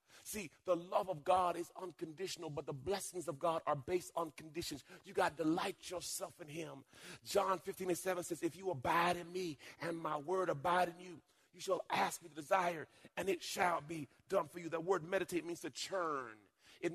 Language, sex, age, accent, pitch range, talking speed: English, male, 30-49, American, 150-185 Hz, 210 wpm